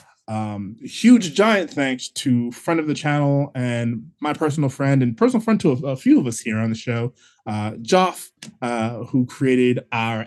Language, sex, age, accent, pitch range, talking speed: English, male, 20-39, American, 120-155 Hz, 195 wpm